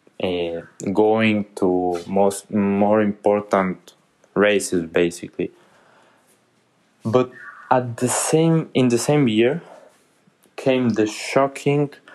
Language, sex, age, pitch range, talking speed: English, male, 20-39, 100-130 Hz, 95 wpm